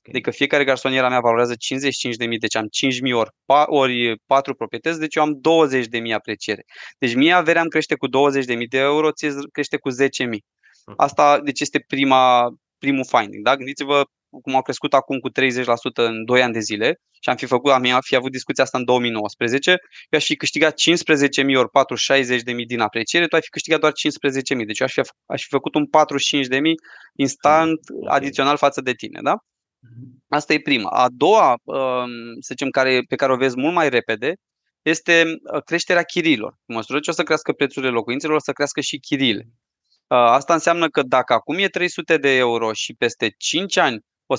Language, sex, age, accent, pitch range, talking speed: Romanian, male, 20-39, native, 125-155 Hz, 185 wpm